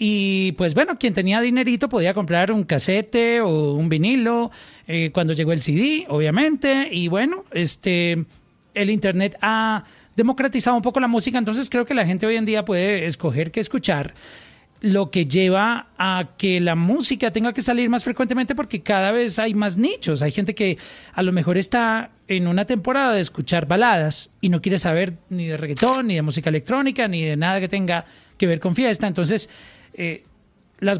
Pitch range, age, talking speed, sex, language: 175-230 Hz, 30-49, 185 wpm, male, Spanish